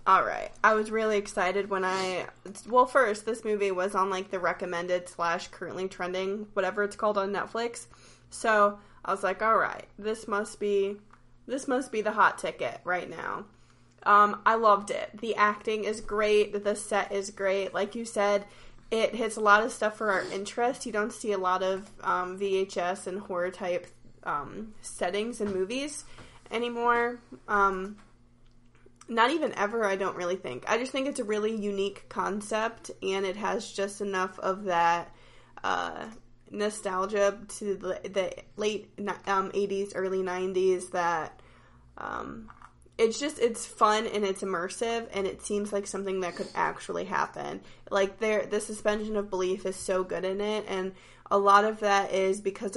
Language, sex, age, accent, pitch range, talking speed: English, female, 20-39, American, 185-215 Hz, 170 wpm